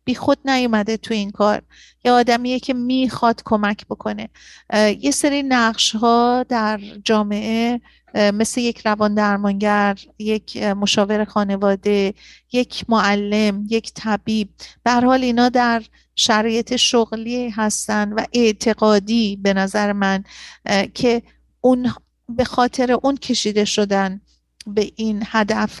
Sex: female